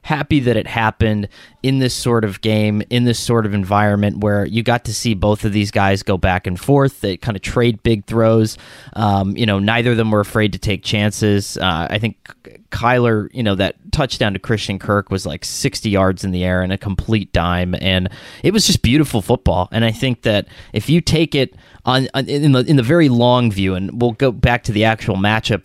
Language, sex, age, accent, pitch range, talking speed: English, male, 20-39, American, 100-120 Hz, 225 wpm